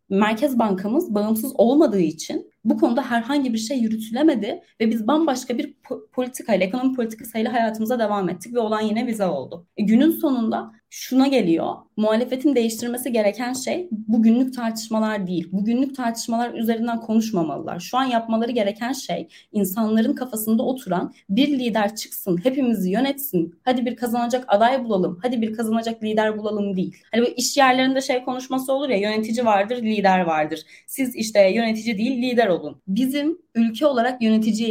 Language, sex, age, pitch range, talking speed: Turkish, female, 30-49, 195-245 Hz, 155 wpm